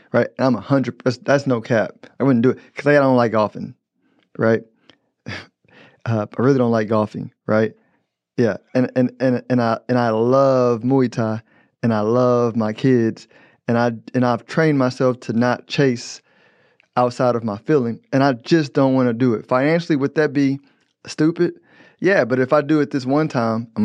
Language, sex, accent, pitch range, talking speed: English, male, American, 115-135 Hz, 195 wpm